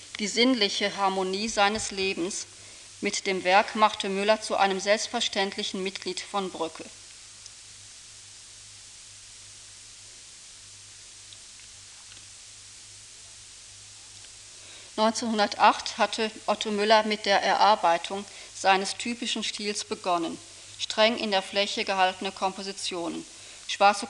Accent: German